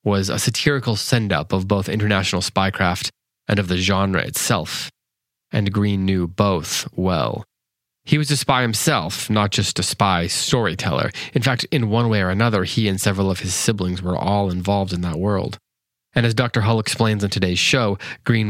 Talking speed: 180 wpm